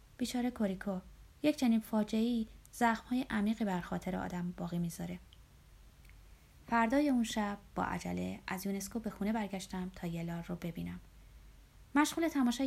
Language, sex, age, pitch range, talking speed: Persian, female, 20-39, 175-230 Hz, 135 wpm